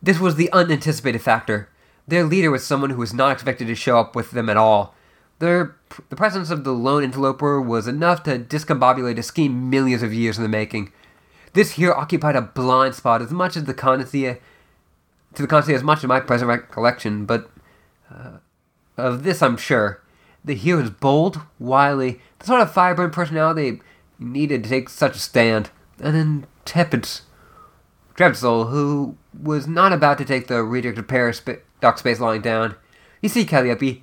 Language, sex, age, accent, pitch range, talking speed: English, male, 20-39, American, 120-155 Hz, 180 wpm